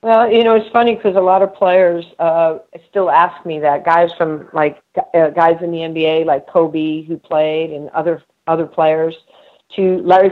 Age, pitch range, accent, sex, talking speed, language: 50-69, 165-195 Hz, American, female, 190 wpm, English